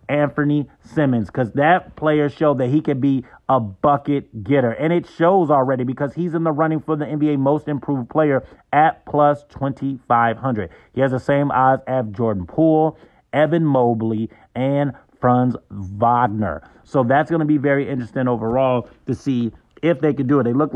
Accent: American